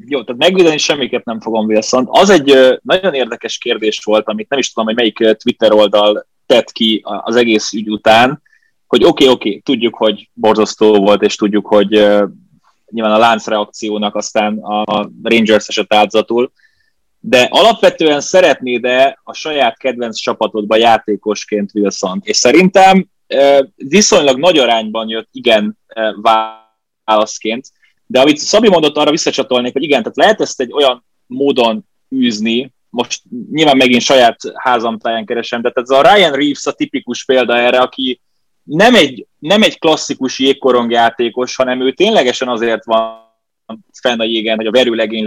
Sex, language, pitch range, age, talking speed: male, Hungarian, 110-135 Hz, 20-39, 150 wpm